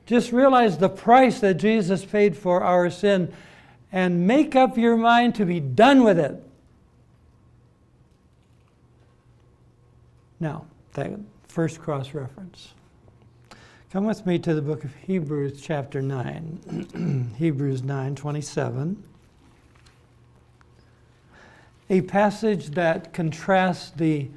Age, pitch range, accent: 60-79, 130-175 Hz, American